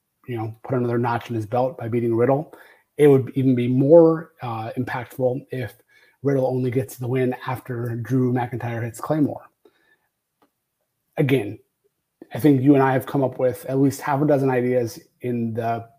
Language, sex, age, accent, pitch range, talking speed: English, male, 30-49, American, 120-145 Hz, 175 wpm